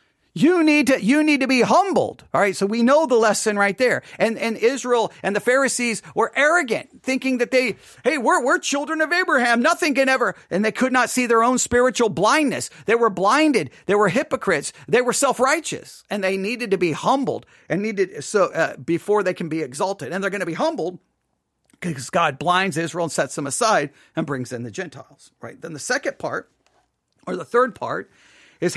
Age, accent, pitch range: 40-59, American, 200-270 Hz